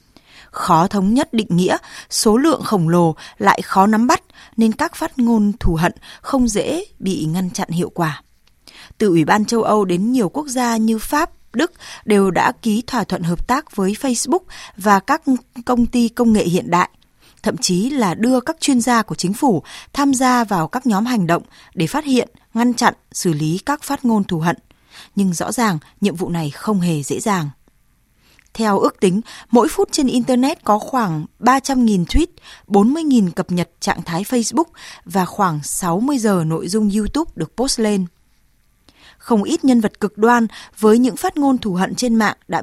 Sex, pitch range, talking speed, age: female, 185-250 Hz, 190 wpm, 20-39